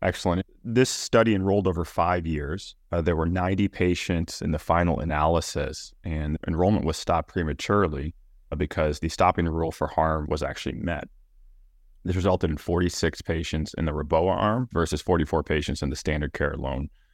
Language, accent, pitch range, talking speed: English, American, 80-95 Hz, 165 wpm